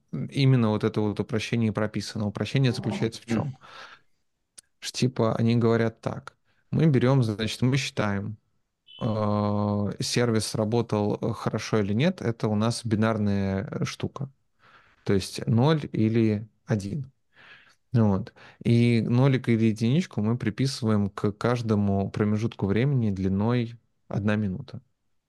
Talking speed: 115 wpm